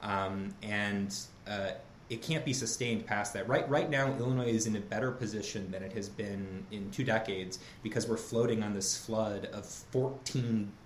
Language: English